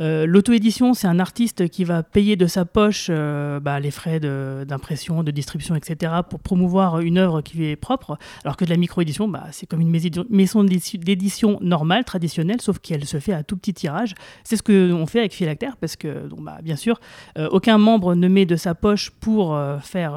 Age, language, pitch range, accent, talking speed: 30-49, French, 160-200 Hz, French, 215 wpm